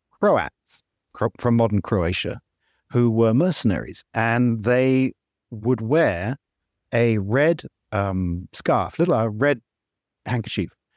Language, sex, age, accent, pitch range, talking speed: English, male, 50-69, British, 100-135 Hz, 105 wpm